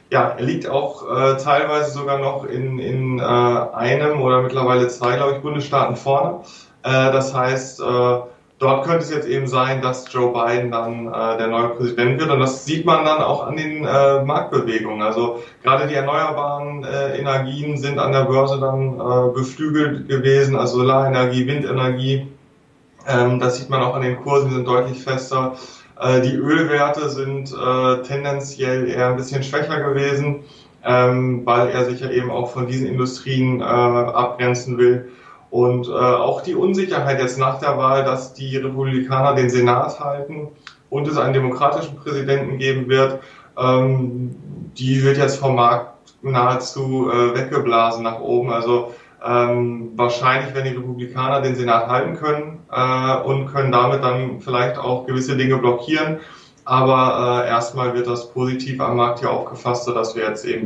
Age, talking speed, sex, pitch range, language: 20-39, 165 wpm, male, 125-140 Hz, German